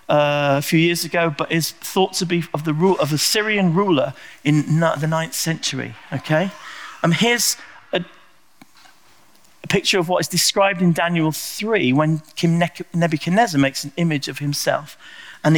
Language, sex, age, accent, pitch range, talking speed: English, male, 40-59, British, 145-175 Hz, 175 wpm